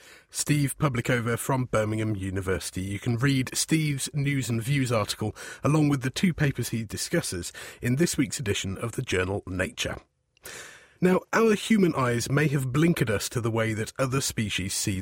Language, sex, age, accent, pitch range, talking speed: English, male, 30-49, British, 105-145 Hz, 170 wpm